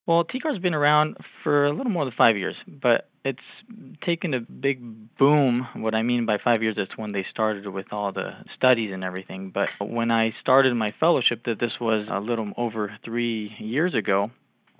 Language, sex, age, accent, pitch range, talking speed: English, male, 20-39, American, 110-125 Hz, 195 wpm